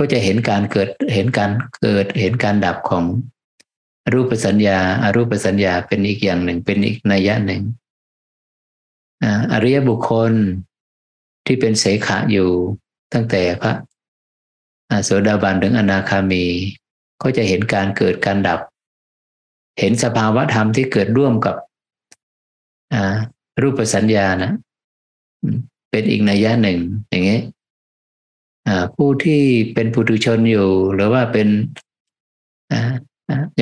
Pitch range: 95-115 Hz